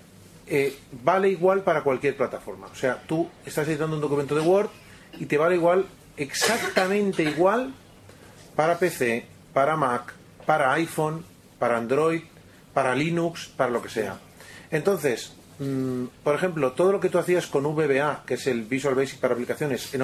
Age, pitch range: 40-59, 130-175 Hz